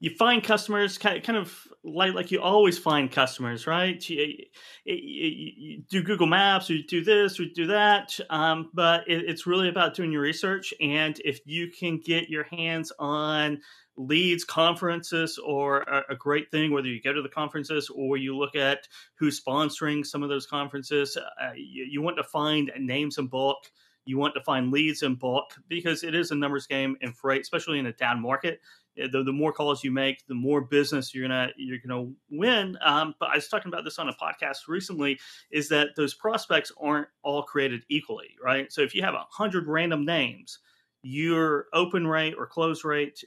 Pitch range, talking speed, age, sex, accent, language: 140-170 Hz, 200 wpm, 30-49, male, American, English